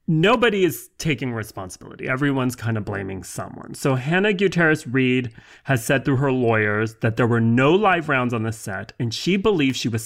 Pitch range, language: 115-150 Hz, English